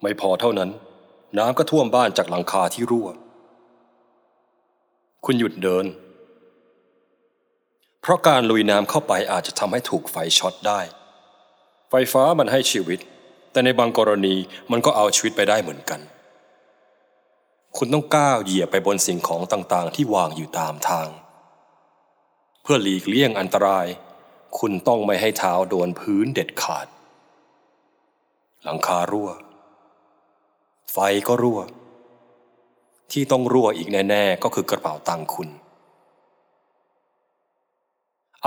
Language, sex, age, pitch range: Thai, male, 20-39, 95-130 Hz